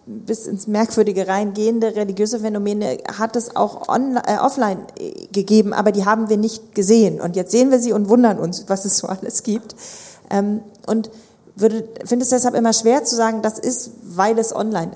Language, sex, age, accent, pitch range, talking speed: German, female, 40-59, German, 190-225 Hz, 185 wpm